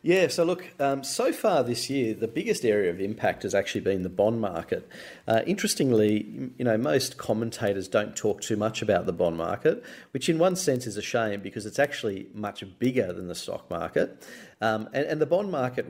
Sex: male